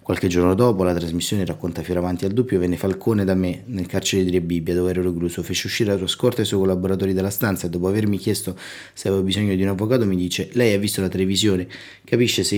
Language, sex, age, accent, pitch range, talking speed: Italian, male, 30-49, native, 90-105 Hz, 240 wpm